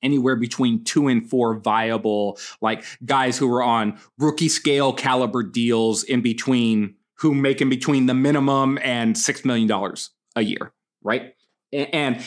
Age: 20-39